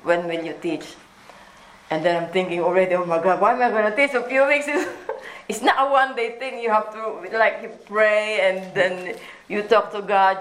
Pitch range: 185-235 Hz